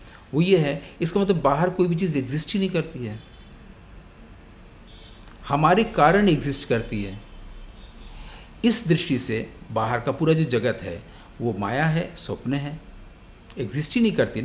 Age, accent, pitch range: 50-69, Indian, 115-175 Hz